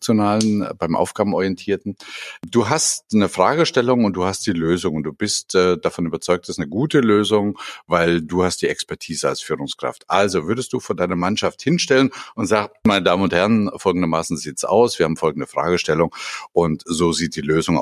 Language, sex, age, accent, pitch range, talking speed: German, male, 50-69, German, 90-130 Hz, 185 wpm